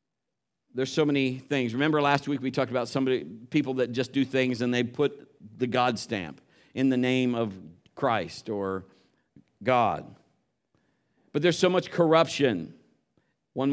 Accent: American